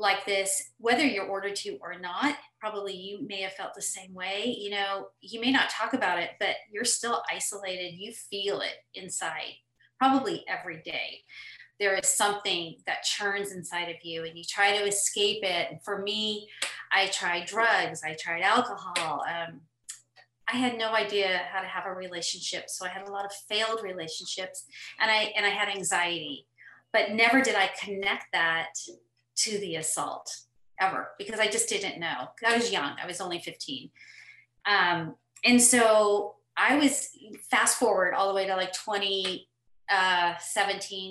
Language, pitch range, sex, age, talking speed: English, 180-220 Hz, female, 40-59, 170 wpm